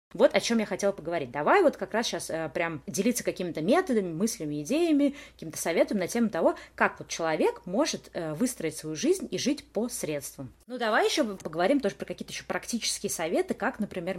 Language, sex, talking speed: Russian, female, 200 wpm